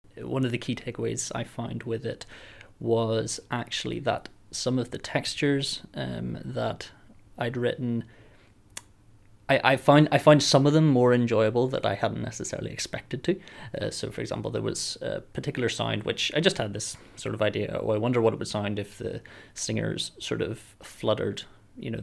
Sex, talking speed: male, 185 wpm